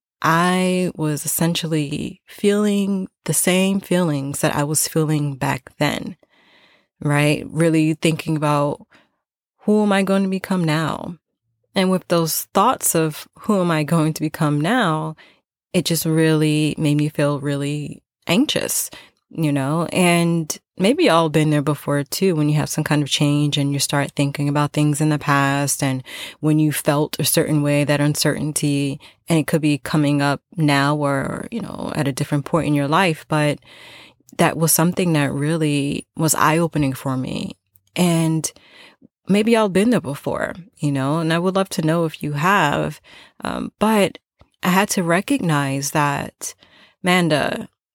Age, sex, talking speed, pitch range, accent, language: 20-39, female, 165 wpm, 145-175 Hz, American, English